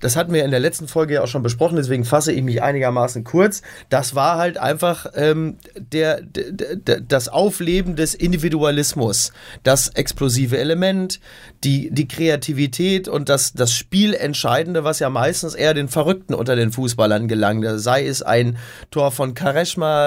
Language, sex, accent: German, male, German